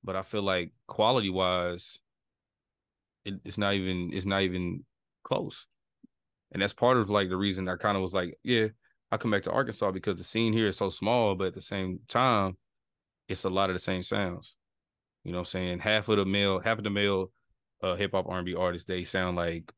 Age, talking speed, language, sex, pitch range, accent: 20-39, 215 wpm, English, male, 90-110 Hz, American